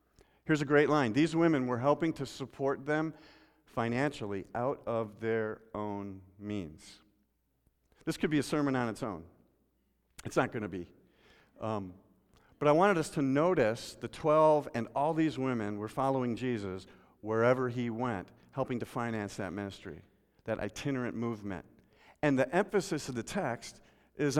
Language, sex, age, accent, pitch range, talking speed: English, male, 50-69, American, 105-150 Hz, 155 wpm